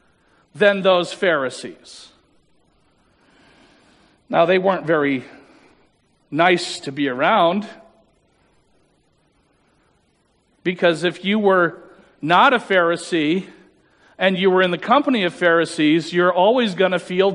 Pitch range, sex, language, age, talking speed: 190-260 Hz, male, English, 50-69, 105 wpm